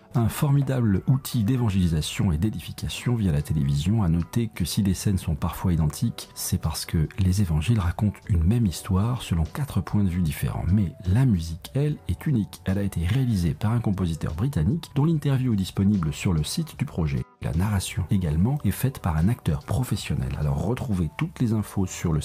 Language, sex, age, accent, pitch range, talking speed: French, male, 40-59, French, 95-130 Hz, 195 wpm